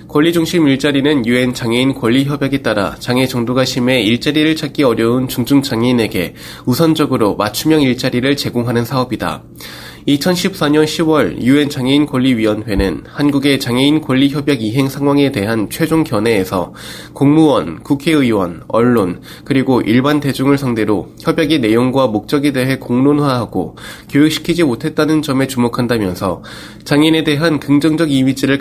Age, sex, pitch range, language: 20-39, male, 115-155 Hz, Korean